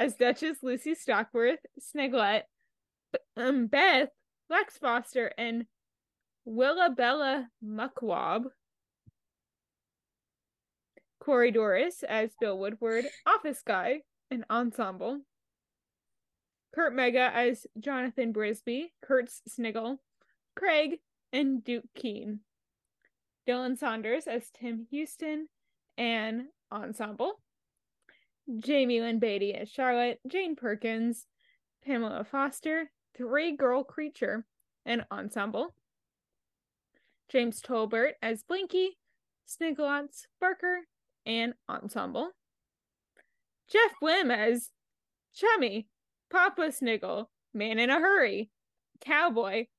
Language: English